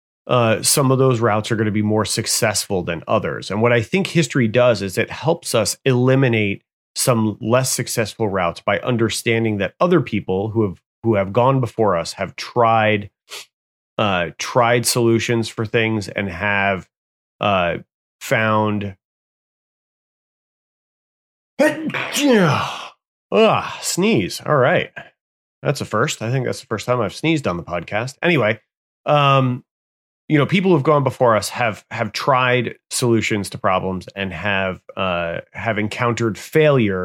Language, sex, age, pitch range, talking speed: English, male, 30-49, 100-125 Hz, 145 wpm